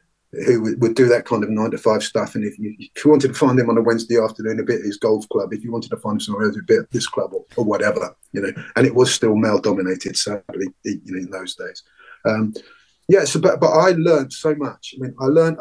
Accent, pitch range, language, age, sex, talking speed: British, 110-150 Hz, English, 30-49, male, 275 wpm